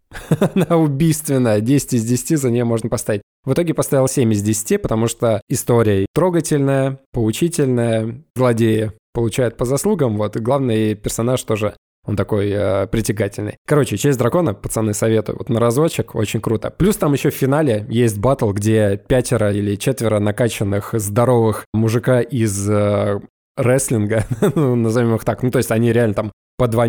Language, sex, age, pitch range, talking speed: Russian, male, 20-39, 110-135 Hz, 160 wpm